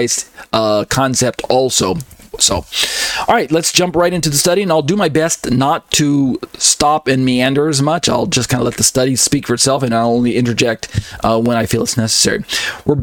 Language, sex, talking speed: English, male, 205 wpm